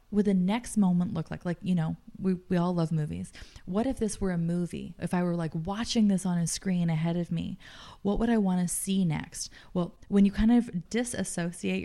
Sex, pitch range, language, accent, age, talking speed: female, 160-195 Hz, English, American, 20-39, 230 wpm